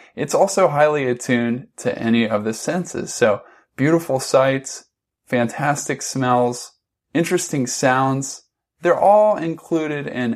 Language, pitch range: English, 120-155 Hz